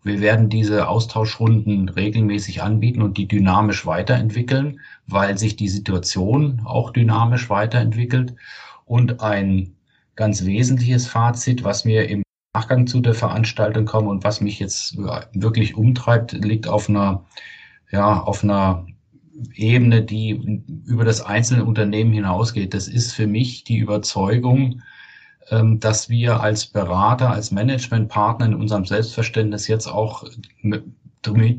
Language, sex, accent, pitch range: German, male, German, 105-115 Hz